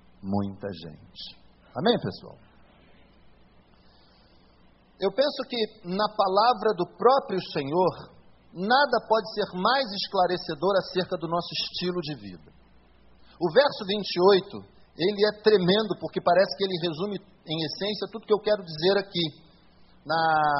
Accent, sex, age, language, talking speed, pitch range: Brazilian, male, 50-69, Portuguese, 125 wpm, 130-200 Hz